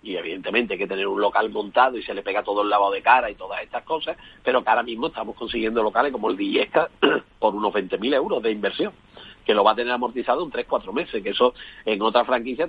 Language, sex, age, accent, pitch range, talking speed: Spanish, male, 40-59, Spanish, 110-130 Hz, 240 wpm